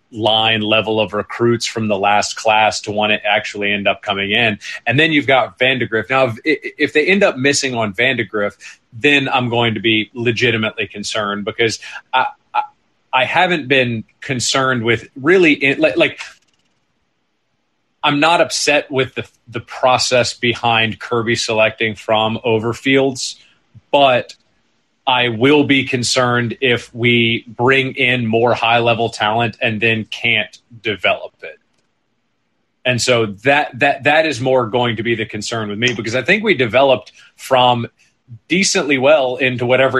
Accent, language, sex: American, English, male